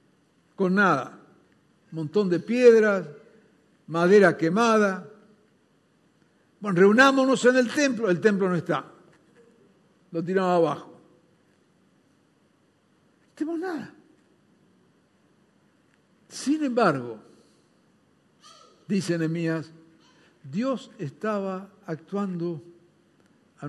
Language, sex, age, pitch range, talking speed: Spanish, male, 60-79, 165-225 Hz, 75 wpm